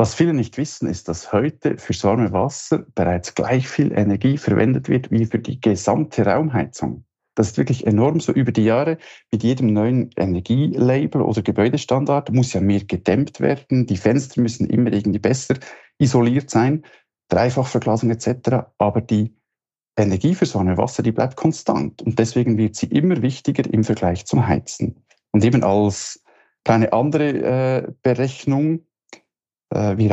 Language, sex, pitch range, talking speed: German, male, 110-140 Hz, 155 wpm